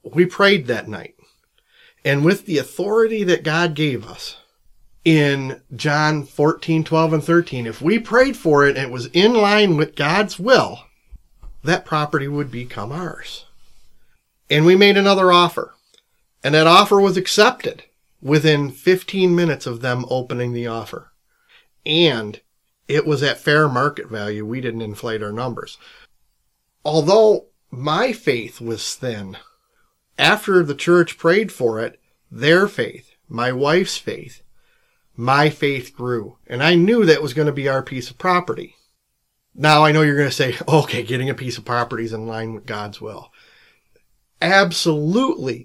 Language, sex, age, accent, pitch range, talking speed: English, male, 40-59, American, 125-175 Hz, 155 wpm